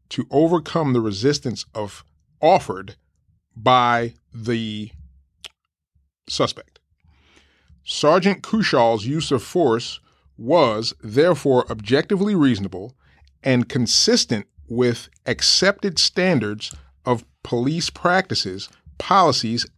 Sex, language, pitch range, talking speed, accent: male, English, 105-145 Hz, 80 wpm, American